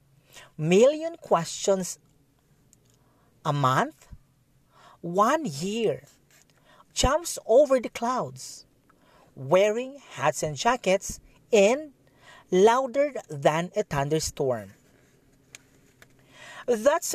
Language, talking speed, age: Filipino, 70 wpm, 40-59